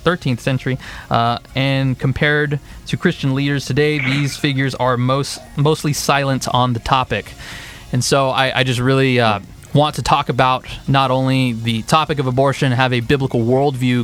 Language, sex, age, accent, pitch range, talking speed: English, male, 20-39, American, 115-140 Hz, 165 wpm